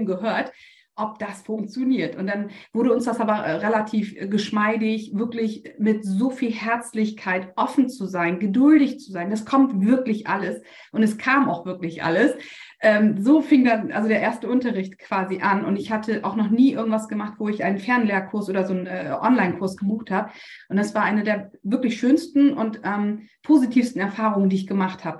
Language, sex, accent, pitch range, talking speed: German, female, German, 195-235 Hz, 180 wpm